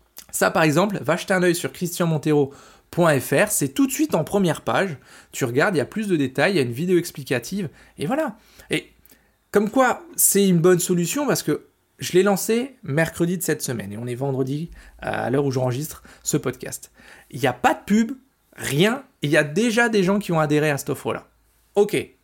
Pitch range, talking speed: 135-195 Hz, 210 wpm